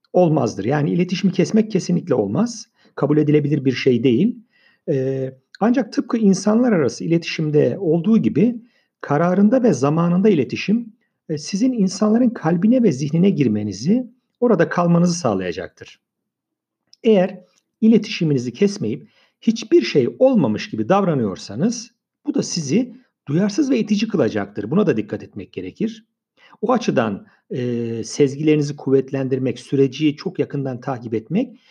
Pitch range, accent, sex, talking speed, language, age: 135-225 Hz, native, male, 115 wpm, Turkish, 50-69